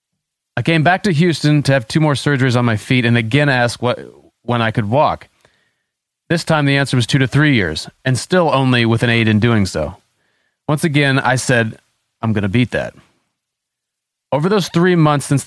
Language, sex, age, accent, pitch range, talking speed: English, male, 30-49, American, 115-145 Hz, 205 wpm